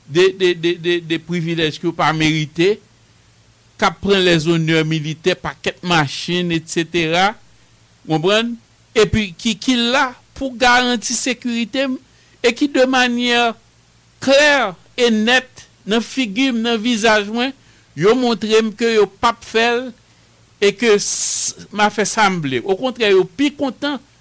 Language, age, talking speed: English, 60-79, 130 wpm